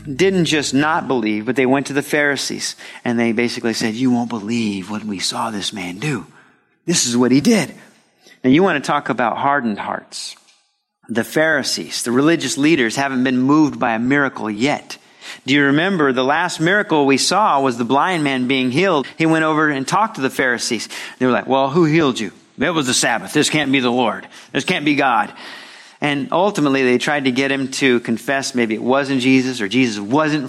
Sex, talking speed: male, 210 wpm